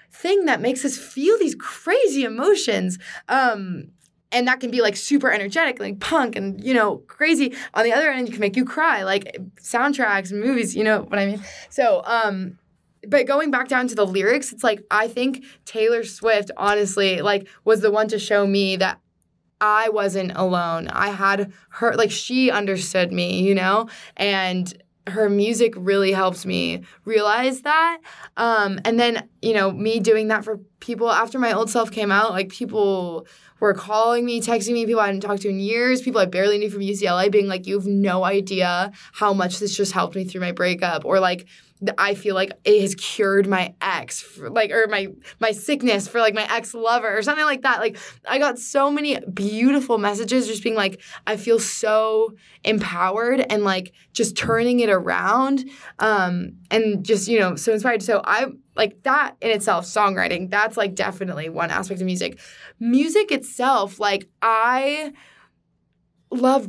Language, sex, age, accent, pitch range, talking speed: English, female, 20-39, American, 195-240 Hz, 185 wpm